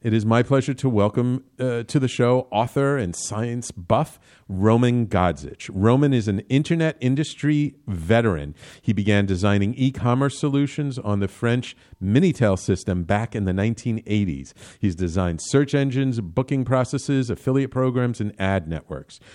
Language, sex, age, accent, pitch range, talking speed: English, male, 50-69, American, 100-130 Hz, 145 wpm